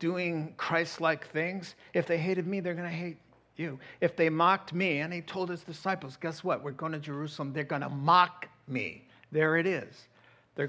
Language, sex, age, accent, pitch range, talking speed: English, male, 50-69, American, 160-215 Hz, 190 wpm